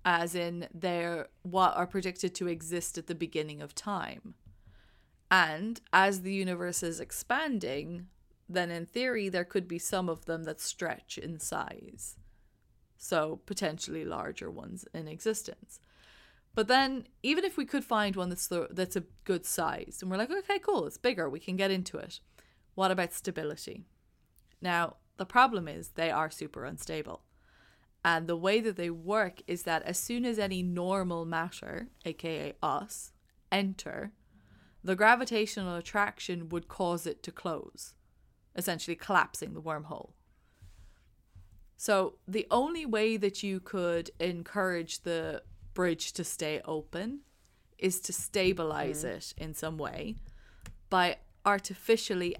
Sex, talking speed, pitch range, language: female, 145 wpm, 165-195 Hz, English